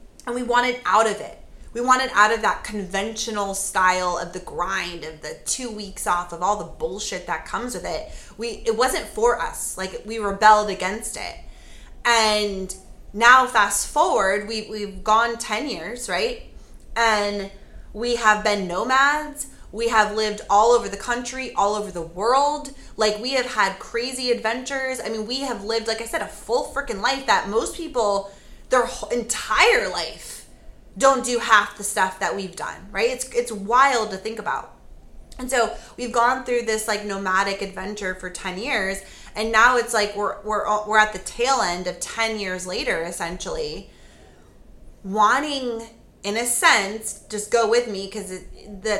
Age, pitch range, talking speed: 20-39, 200-240 Hz, 175 wpm